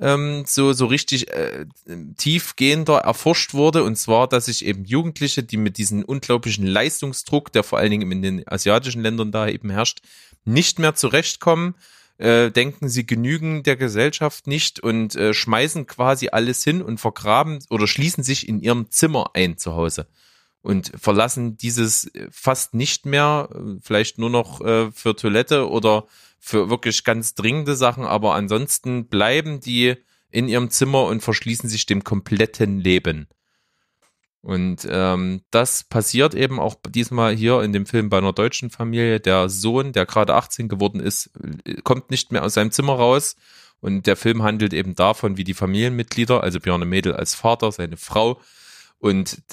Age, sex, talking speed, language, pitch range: 30-49, male, 160 wpm, German, 105-130 Hz